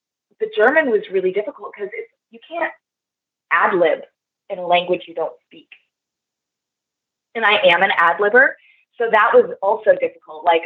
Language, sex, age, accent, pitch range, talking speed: English, female, 20-39, American, 175-255 Hz, 160 wpm